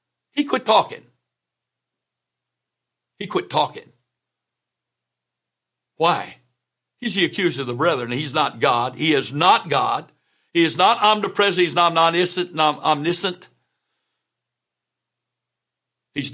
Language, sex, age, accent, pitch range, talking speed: English, male, 60-79, American, 125-180 Hz, 105 wpm